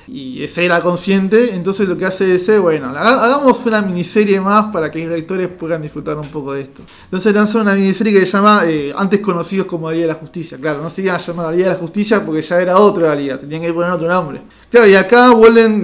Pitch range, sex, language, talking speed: 165-200 Hz, male, Spanish, 245 wpm